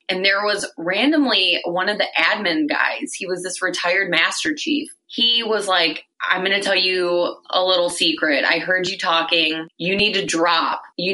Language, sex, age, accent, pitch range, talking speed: English, female, 20-39, American, 170-230 Hz, 190 wpm